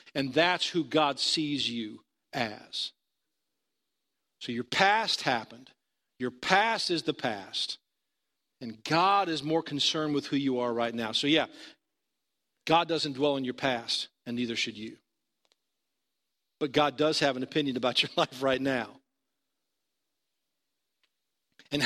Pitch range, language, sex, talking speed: 120-155 Hz, English, male, 140 wpm